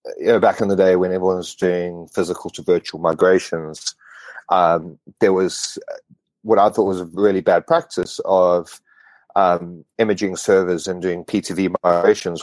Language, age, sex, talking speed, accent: English, 30-49, male, 160 wpm, Australian